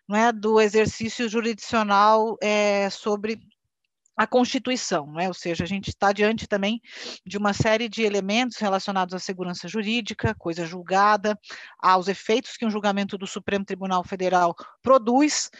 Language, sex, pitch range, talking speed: Portuguese, female, 205-260 Hz, 140 wpm